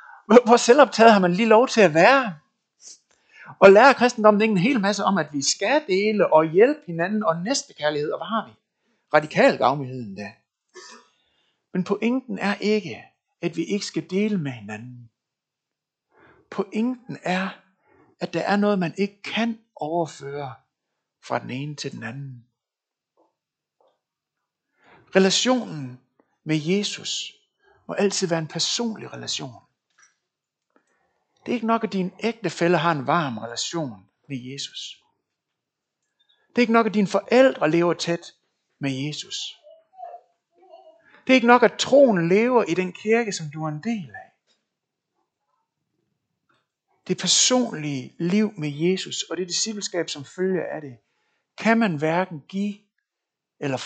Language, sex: Danish, male